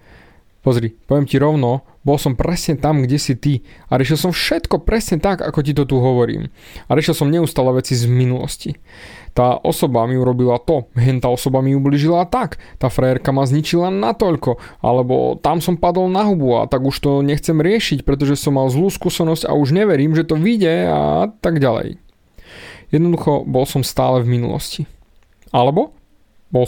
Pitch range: 130-185 Hz